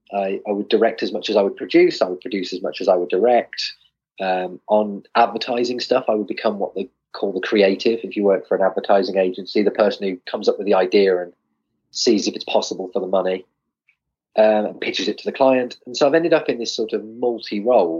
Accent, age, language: British, 30-49, English